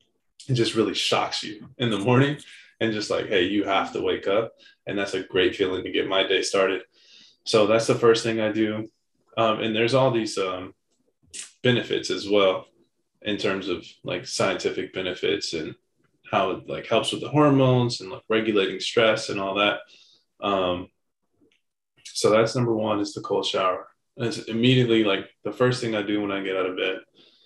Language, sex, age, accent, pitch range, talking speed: English, male, 20-39, American, 100-120 Hz, 190 wpm